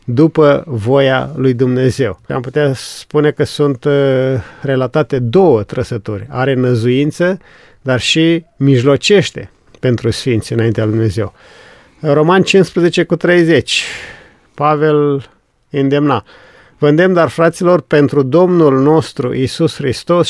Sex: male